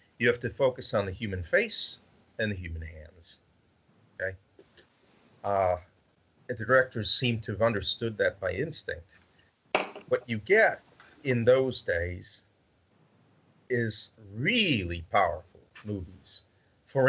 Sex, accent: male, American